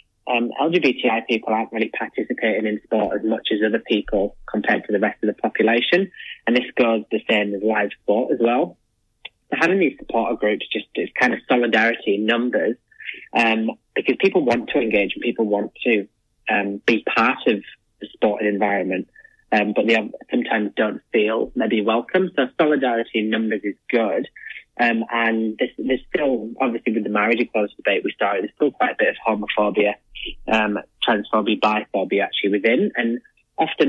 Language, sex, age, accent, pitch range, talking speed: English, male, 20-39, British, 105-120 Hz, 180 wpm